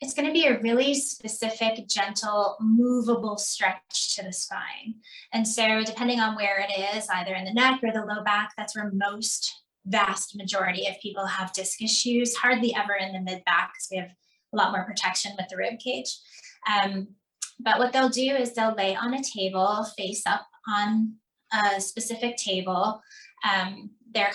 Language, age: English, 20-39